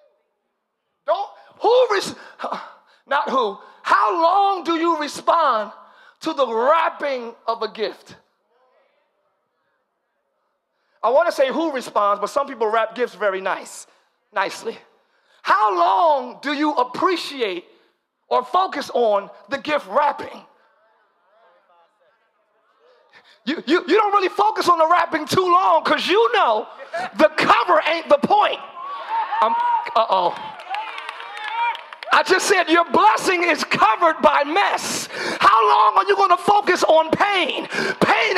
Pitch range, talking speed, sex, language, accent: 270-395 Hz, 130 wpm, male, English, American